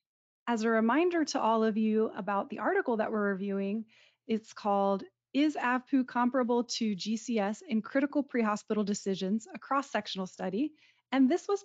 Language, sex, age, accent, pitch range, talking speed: English, female, 30-49, American, 210-270 Hz, 155 wpm